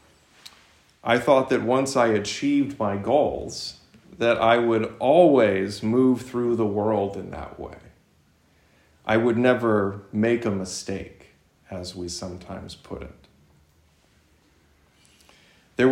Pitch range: 95-120 Hz